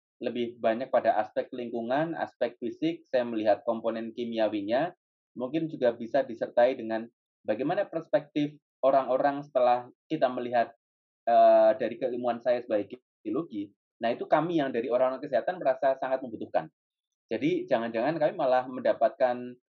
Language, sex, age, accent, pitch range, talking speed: Indonesian, male, 20-39, native, 125-165 Hz, 130 wpm